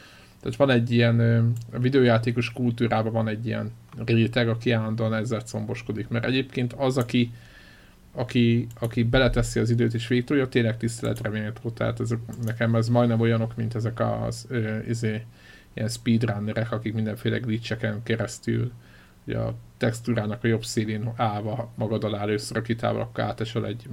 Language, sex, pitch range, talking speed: Hungarian, male, 110-120 Hz, 150 wpm